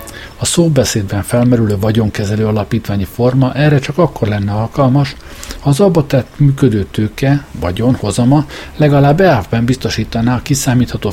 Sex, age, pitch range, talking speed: male, 60-79, 105-135 Hz, 125 wpm